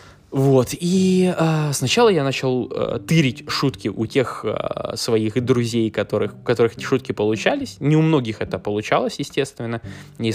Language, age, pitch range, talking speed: Russian, 20-39, 105-130 Hz, 150 wpm